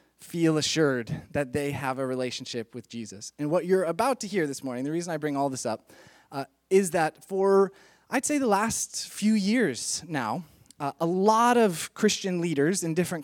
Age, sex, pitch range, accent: 20-39, male, 140-190 Hz, American